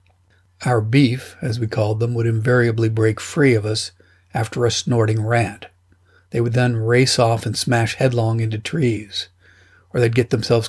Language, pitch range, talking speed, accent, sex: English, 105-125 Hz, 170 wpm, American, male